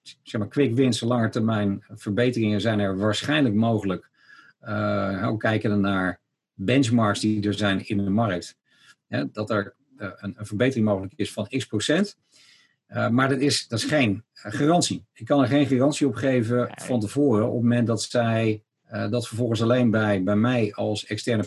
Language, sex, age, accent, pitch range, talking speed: Dutch, male, 50-69, Dutch, 105-130 Hz, 175 wpm